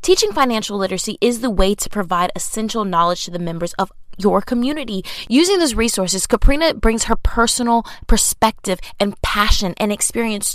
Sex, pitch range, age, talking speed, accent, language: female, 195-275 Hz, 20-39, 160 wpm, American, English